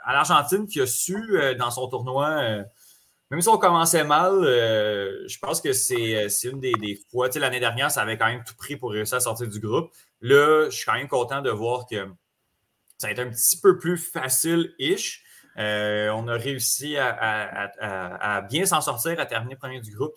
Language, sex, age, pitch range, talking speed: French, male, 30-49, 105-130 Hz, 215 wpm